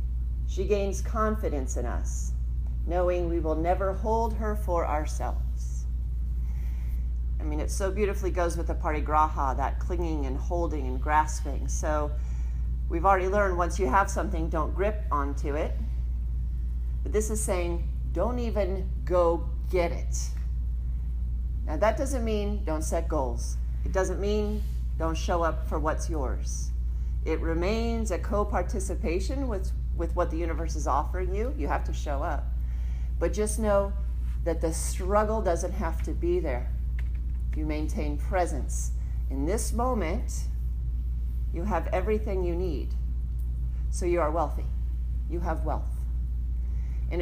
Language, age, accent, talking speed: English, 40-59, American, 140 wpm